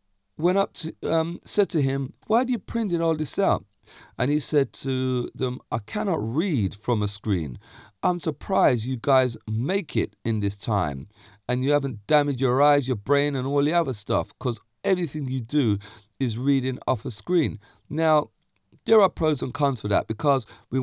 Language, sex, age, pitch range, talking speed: English, male, 40-59, 105-150 Hz, 190 wpm